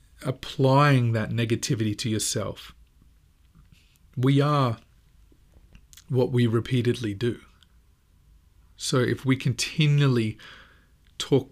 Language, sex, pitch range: English, male, 90-125 Hz